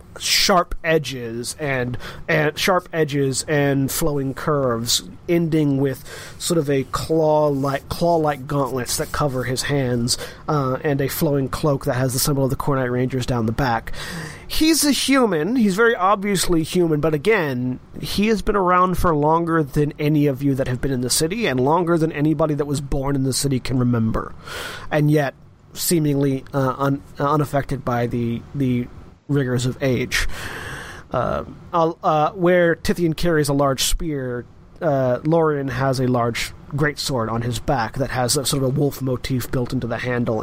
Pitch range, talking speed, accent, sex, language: 130-170 Hz, 170 wpm, American, male, English